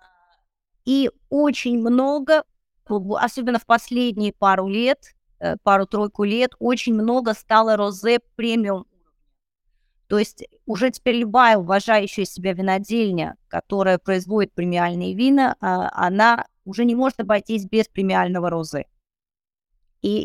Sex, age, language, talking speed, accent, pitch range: female, 20-39, Russian, 105 wpm, native, 190-240 Hz